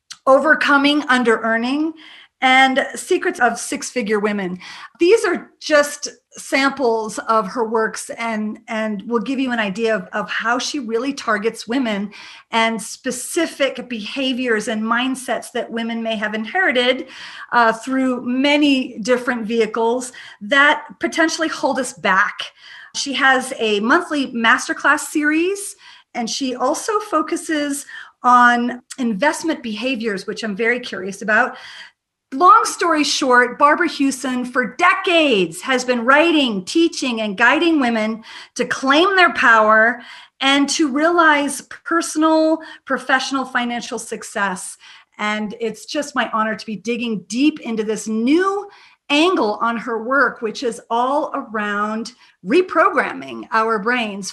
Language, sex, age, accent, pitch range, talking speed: English, female, 40-59, American, 225-295 Hz, 125 wpm